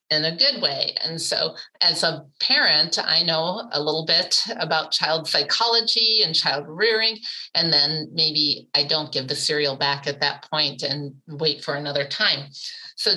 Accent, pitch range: American, 155-215 Hz